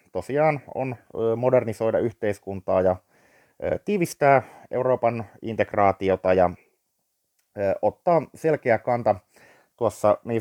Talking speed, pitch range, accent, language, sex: 80 wpm, 95-125 Hz, native, Finnish, male